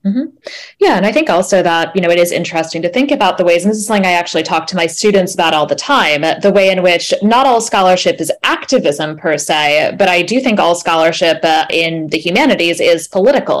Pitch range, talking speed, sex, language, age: 155-185 Hz, 245 wpm, female, English, 10-29